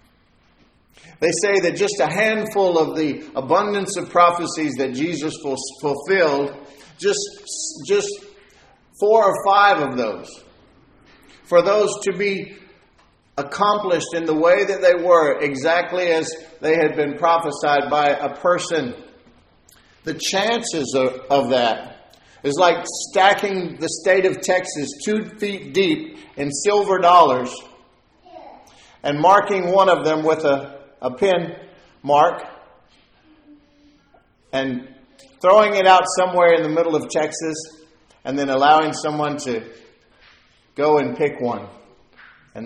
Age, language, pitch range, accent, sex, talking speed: 50-69, English, 130-190 Hz, American, male, 125 wpm